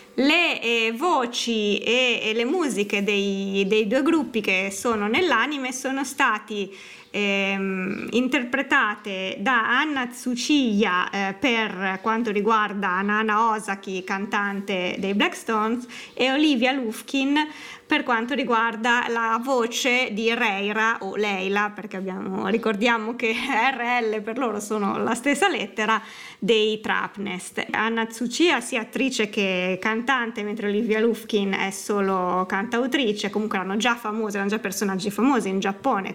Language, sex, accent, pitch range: Italian, female, native, 200-245 Hz